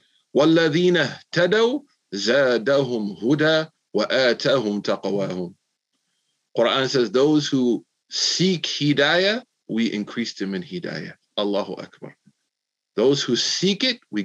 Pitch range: 120-165 Hz